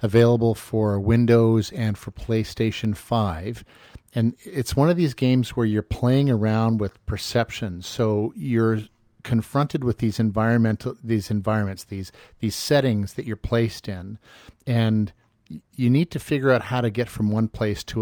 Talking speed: 155 wpm